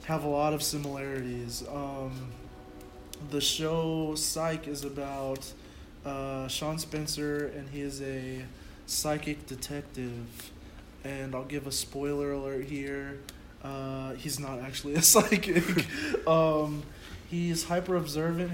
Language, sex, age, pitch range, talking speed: English, male, 20-39, 130-150 Hz, 115 wpm